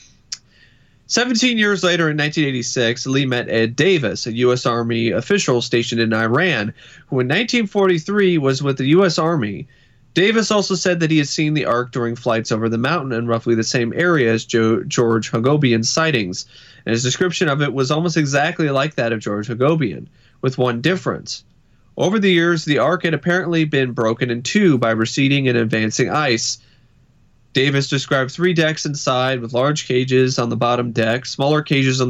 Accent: American